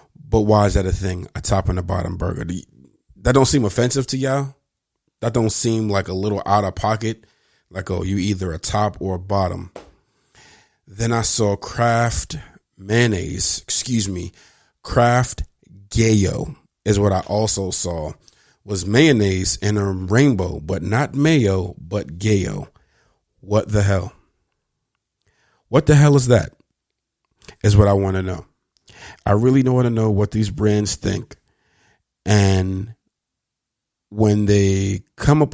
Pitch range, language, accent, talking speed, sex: 95-115 Hz, English, American, 155 wpm, male